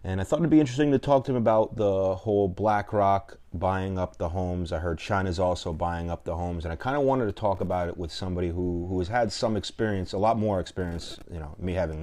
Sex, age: male, 30-49